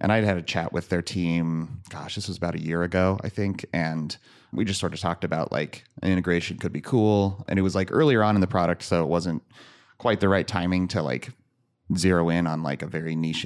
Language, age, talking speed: English, 30-49, 245 wpm